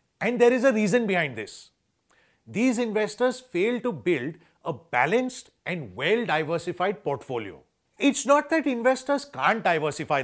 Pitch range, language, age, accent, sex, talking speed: 175-245 Hz, English, 40-59, Indian, male, 140 wpm